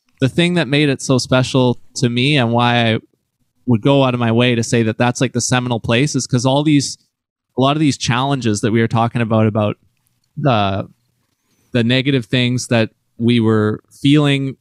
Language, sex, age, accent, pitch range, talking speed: English, male, 20-39, American, 115-130 Hz, 200 wpm